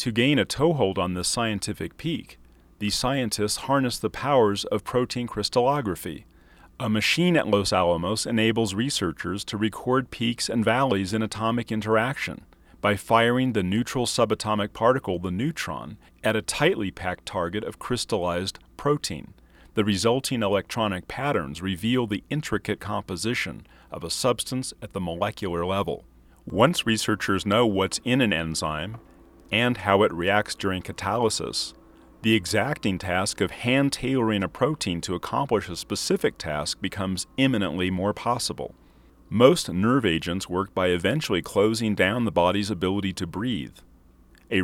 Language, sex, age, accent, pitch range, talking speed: English, male, 40-59, American, 90-115 Hz, 140 wpm